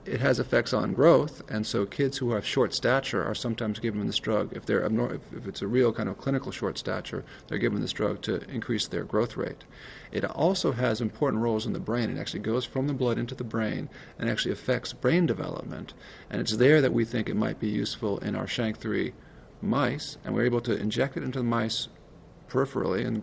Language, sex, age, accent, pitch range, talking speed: English, male, 40-59, American, 110-130 Hz, 220 wpm